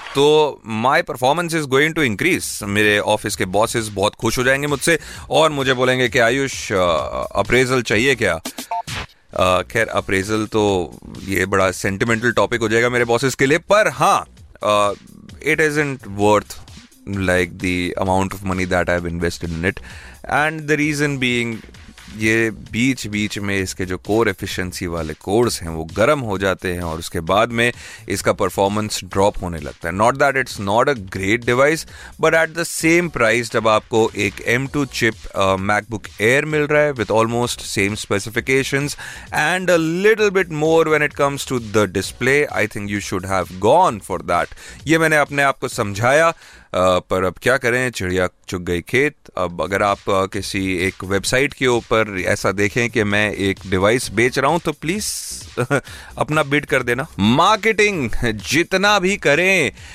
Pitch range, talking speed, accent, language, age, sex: 100-140 Hz, 170 wpm, native, Hindi, 30-49, male